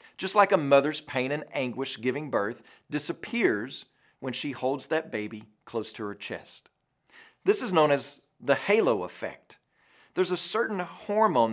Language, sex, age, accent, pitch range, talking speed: English, male, 40-59, American, 125-170 Hz, 155 wpm